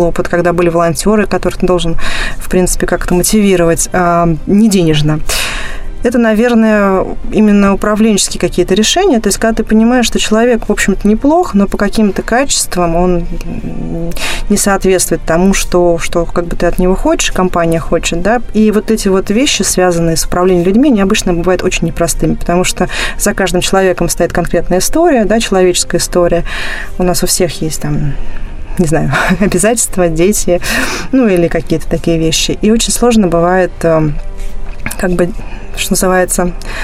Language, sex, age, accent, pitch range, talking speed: Russian, female, 20-39, native, 170-205 Hz, 160 wpm